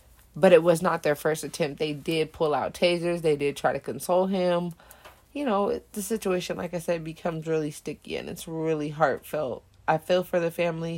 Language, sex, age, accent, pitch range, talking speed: English, female, 20-39, American, 150-180 Hz, 200 wpm